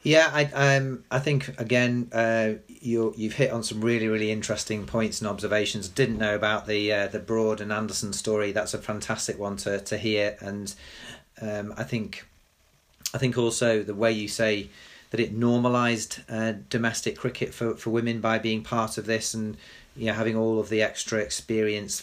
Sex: male